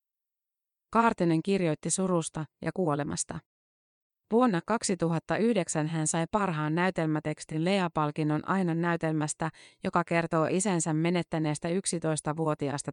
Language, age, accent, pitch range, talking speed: Finnish, 30-49, native, 155-185 Hz, 90 wpm